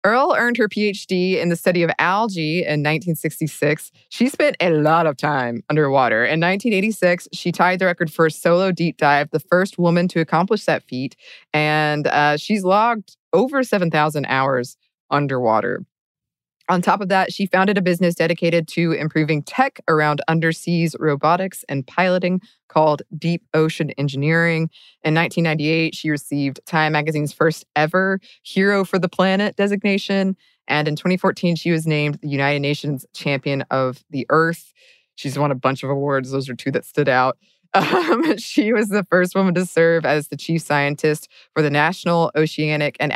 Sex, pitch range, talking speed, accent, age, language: female, 145-185 Hz, 165 wpm, American, 20-39, English